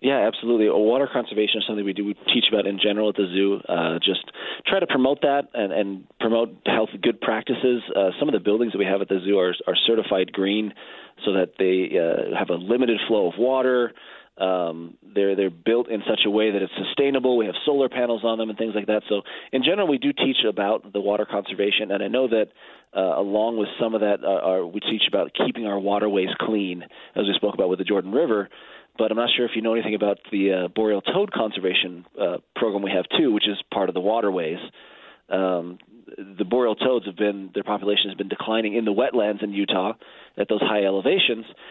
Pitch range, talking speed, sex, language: 100-120 Hz, 225 wpm, male, English